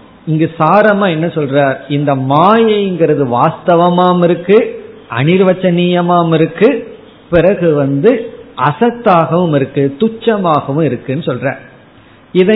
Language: Tamil